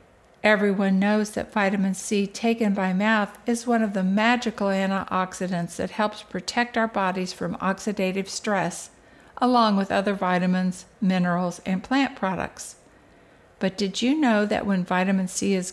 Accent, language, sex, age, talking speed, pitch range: American, English, female, 60-79, 150 wpm, 185-225 Hz